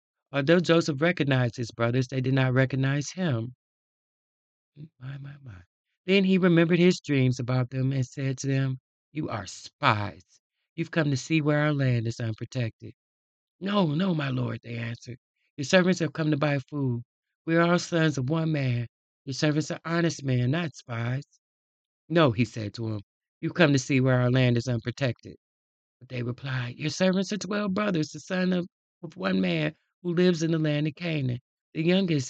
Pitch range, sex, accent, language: 125-165 Hz, male, American, English